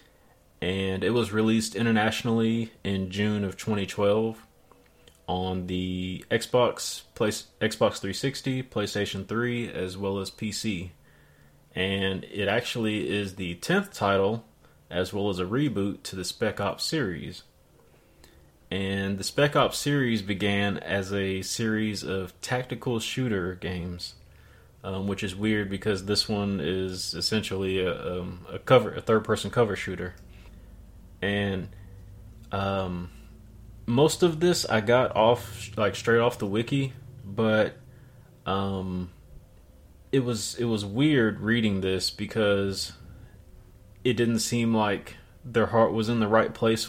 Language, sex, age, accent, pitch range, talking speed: English, male, 30-49, American, 95-115 Hz, 130 wpm